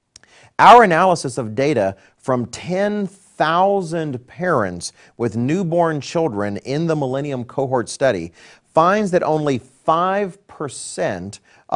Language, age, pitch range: English, 40-59, 110-155 Hz